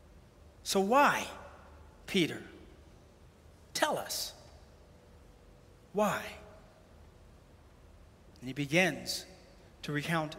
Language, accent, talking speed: English, American, 65 wpm